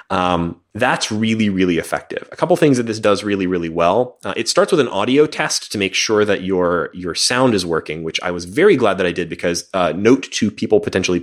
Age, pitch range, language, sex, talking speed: 30-49, 90-120 Hz, English, male, 235 wpm